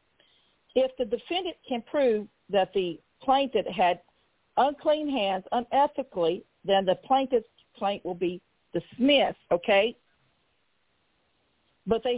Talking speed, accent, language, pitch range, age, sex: 110 wpm, American, English, 200-265 Hz, 50-69, female